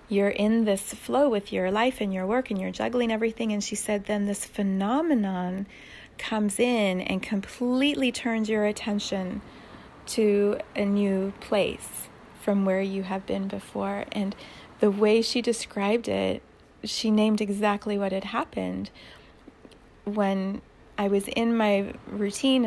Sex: female